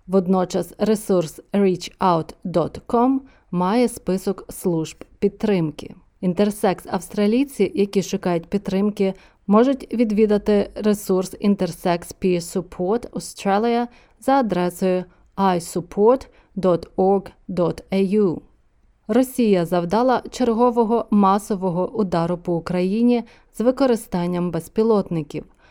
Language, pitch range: Ukrainian, 180-225 Hz